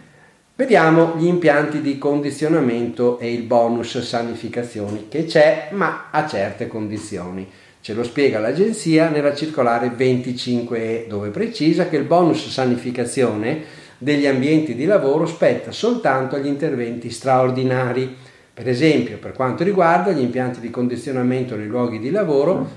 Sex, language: male, Italian